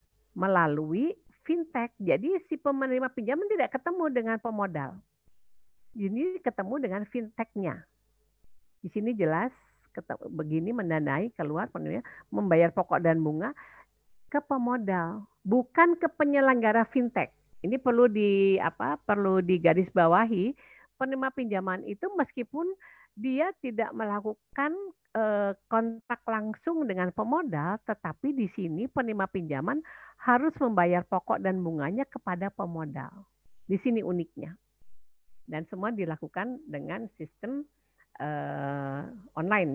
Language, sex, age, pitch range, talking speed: Indonesian, female, 50-69, 175-265 Hz, 105 wpm